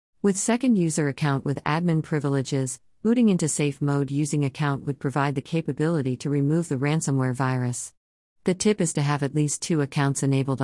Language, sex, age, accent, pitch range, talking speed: English, female, 50-69, American, 130-155 Hz, 180 wpm